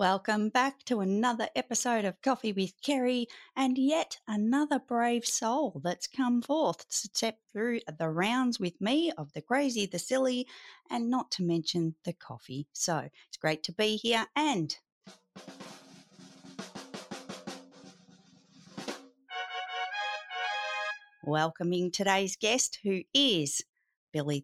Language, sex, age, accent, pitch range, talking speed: English, female, 30-49, Australian, 165-260 Hz, 120 wpm